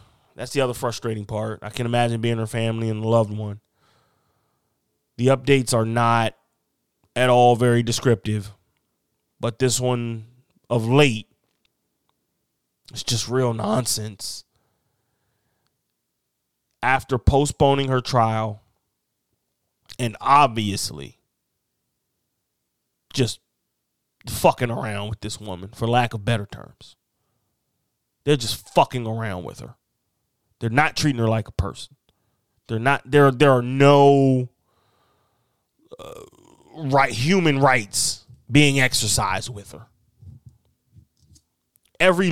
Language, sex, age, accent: English, male, 20-39, American